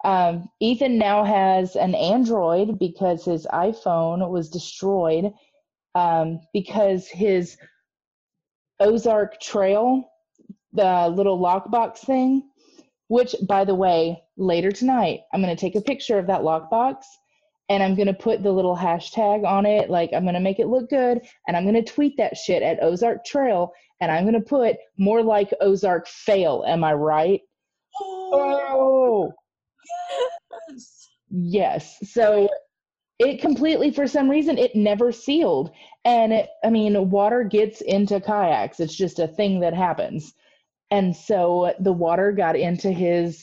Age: 30-49